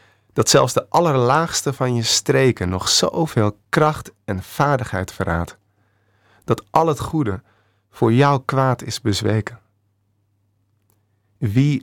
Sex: male